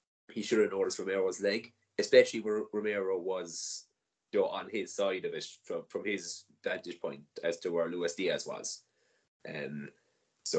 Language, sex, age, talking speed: English, male, 30-49, 170 wpm